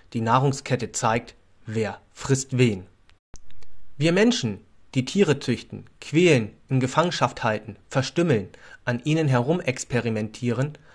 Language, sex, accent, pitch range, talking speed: German, male, German, 115-155 Hz, 105 wpm